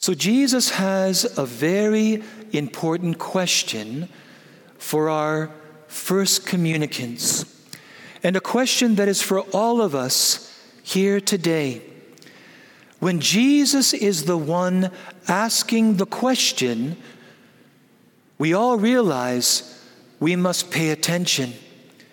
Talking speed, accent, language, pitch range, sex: 100 wpm, American, English, 155-215 Hz, male